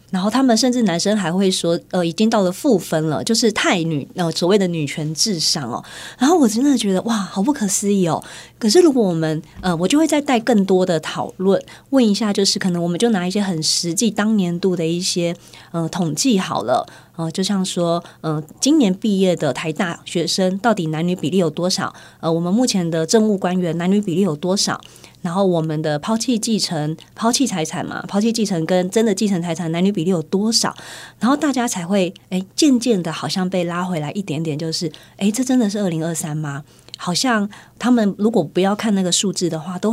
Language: Chinese